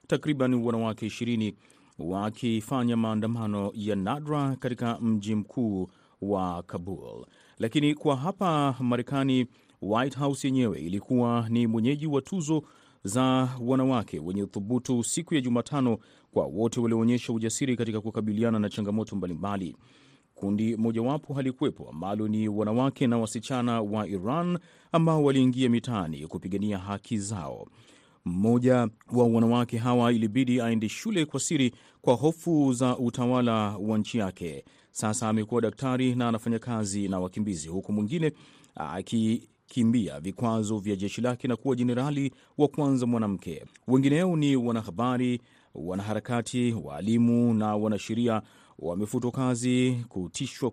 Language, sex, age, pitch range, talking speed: Swahili, male, 30-49, 105-130 Hz, 120 wpm